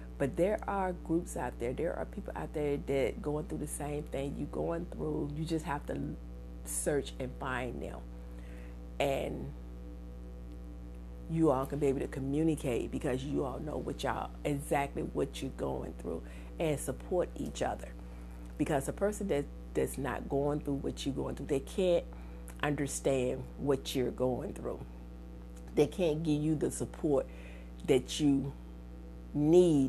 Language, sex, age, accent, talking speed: English, female, 50-69, American, 160 wpm